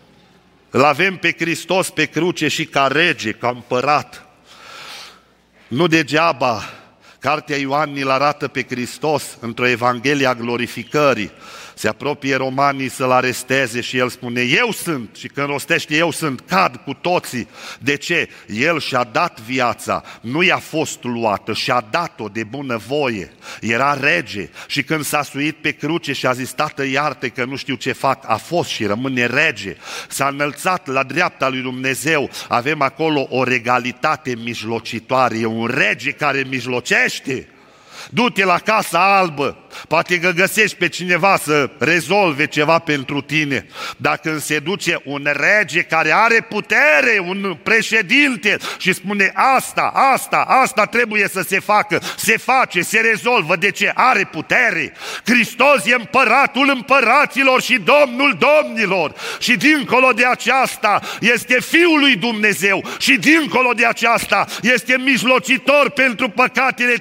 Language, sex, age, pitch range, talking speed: Romanian, male, 50-69, 135-220 Hz, 140 wpm